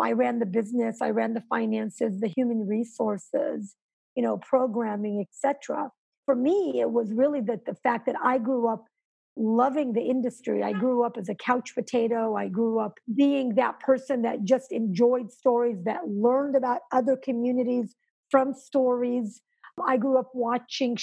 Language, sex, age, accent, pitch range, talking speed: English, female, 50-69, American, 230-270 Hz, 170 wpm